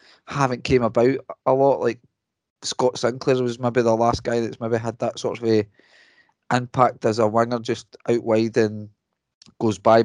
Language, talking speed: English, 180 wpm